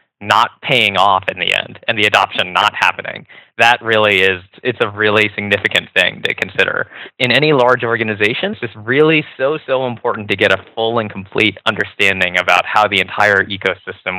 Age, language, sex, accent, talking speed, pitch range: 20-39, English, male, American, 180 wpm, 95-115 Hz